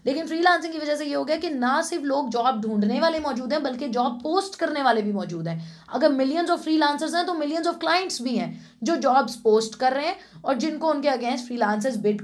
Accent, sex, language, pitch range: Indian, female, English, 205-270 Hz